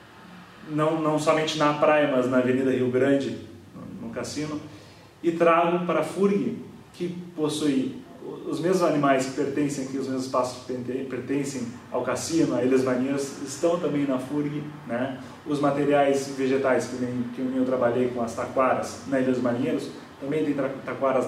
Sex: male